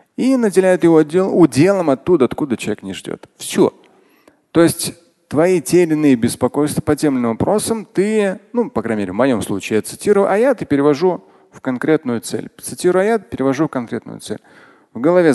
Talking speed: 170 wpm